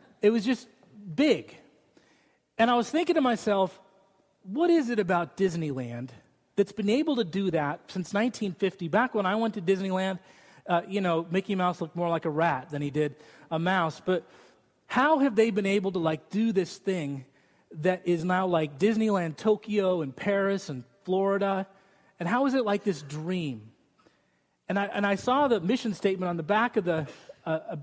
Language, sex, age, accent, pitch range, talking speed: English, male, 30-49, American, 160-215 Hz, 185 wpm